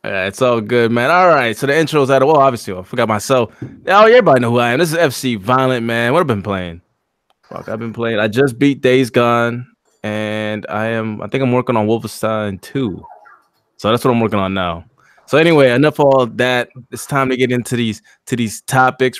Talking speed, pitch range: 240 wpm, 115-145 Hz